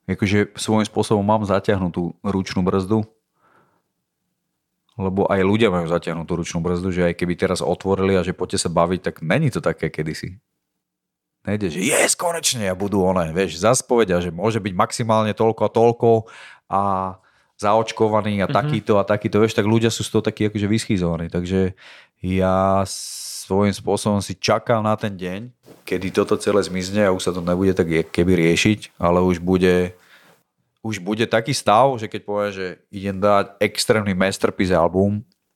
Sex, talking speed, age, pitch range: male, 170 wpm, 40-59, 90-105 Hz